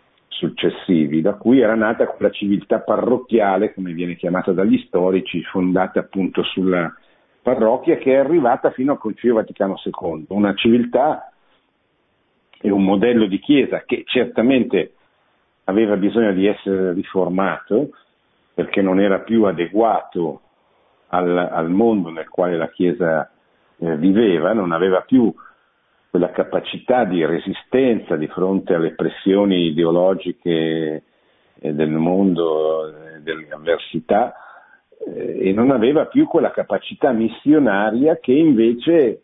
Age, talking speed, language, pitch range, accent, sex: 50-69, 115 wpm, Italian, 90-125 Hz, native, male